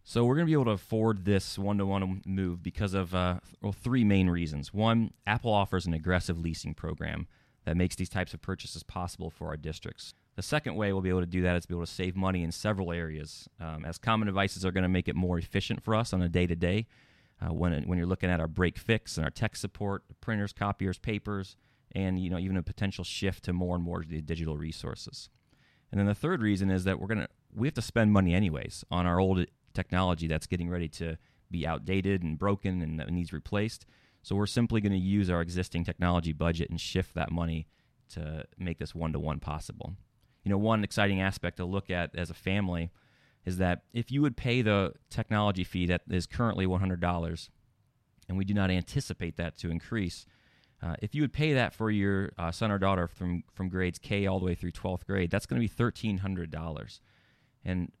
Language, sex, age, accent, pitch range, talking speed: English, male, 30-49, American, 85-105 Hz, 215 wpm